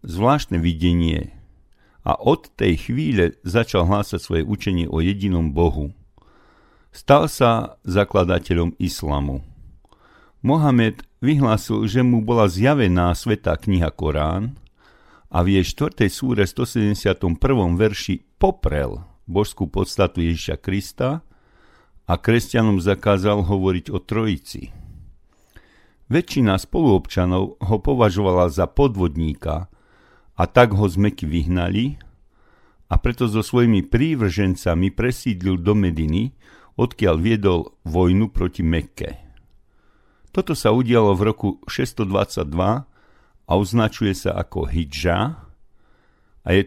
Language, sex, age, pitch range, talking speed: Slovak, male, 50-69, 90-110 Hz, 105 wpm